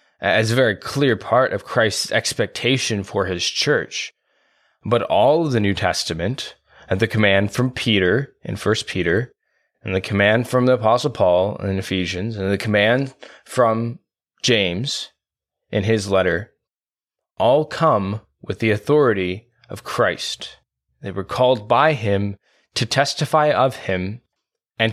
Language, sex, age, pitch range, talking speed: English, male, 20-39, 100-125 Hz, 140 wpm